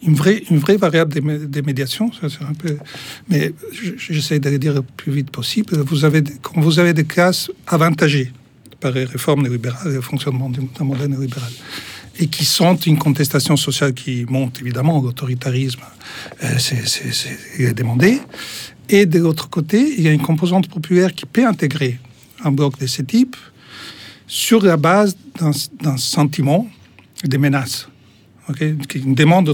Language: French